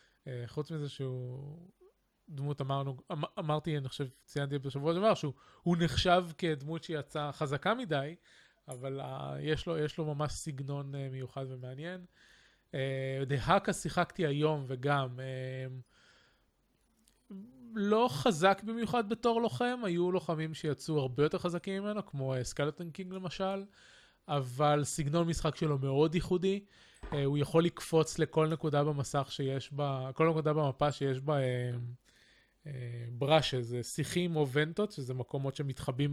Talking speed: 130 wpm